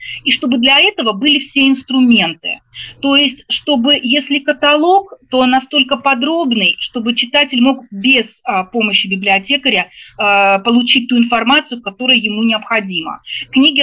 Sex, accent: female, native